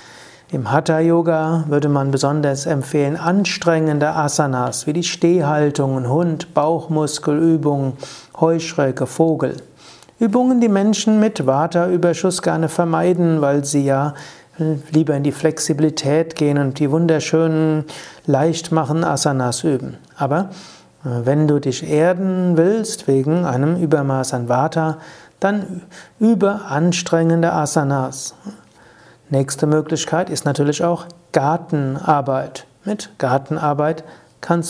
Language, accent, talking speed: German, German, 105 wpm